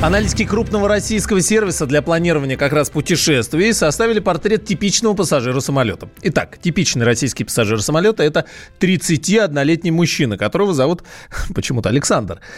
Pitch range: 110-155 Hz